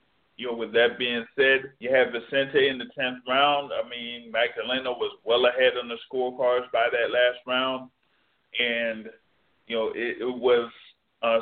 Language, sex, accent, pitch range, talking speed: English, male, American, 115-135 Hz, 175 wpm